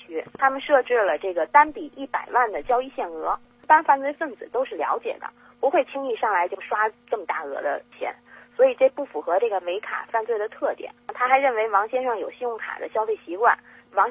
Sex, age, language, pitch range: female, 20-39, Chinese, 225-325 Hz